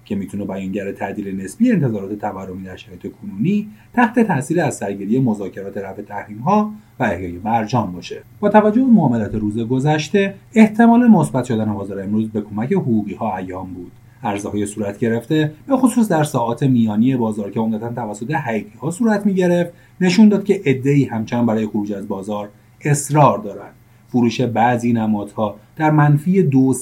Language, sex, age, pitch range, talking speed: Persian, male, 30-49, 110-165 Hz, 160 wpm